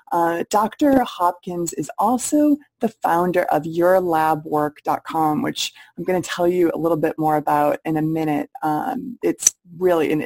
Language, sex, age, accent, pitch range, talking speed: English, female, 20-39, American, 155-185 Hz, 160 wpm